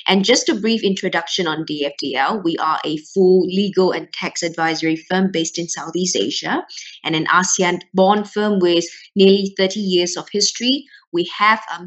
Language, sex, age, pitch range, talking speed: English, female, 20-39, 170-205 Hz, 165 wpm